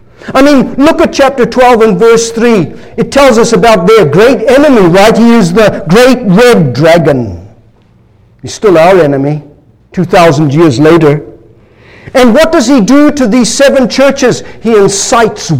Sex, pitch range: male, 175-250 Hz